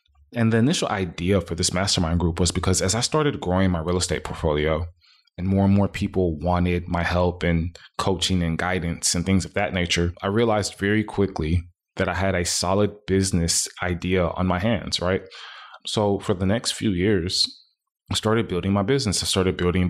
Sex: male